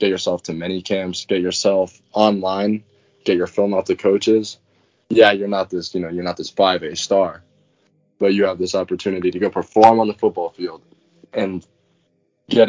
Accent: American